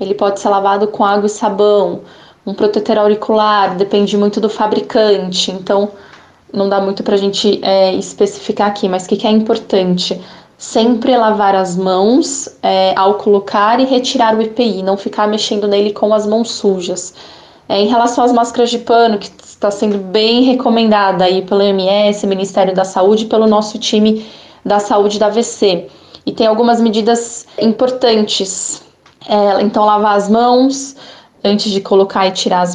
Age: 20-39